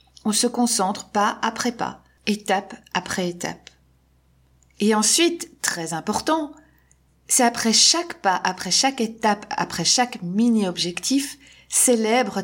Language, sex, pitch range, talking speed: French, female, 185-240 Hz, 115 wpm